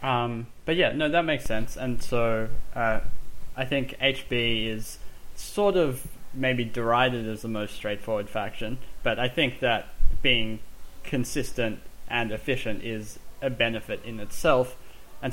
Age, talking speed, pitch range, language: 10-29, 145 wpm, 105-125 Hz, English